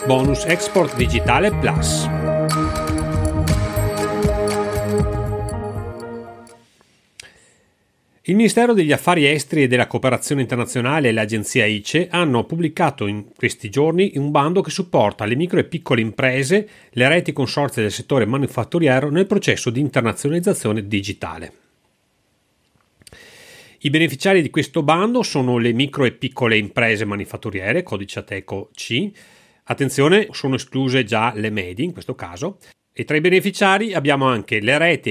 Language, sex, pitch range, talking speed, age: Italian, male, 105-160 Hz, 125 wpm, 40-59